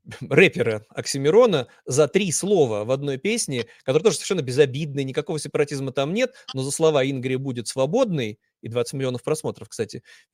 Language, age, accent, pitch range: Russian, 30-49, native, 130-170 Hz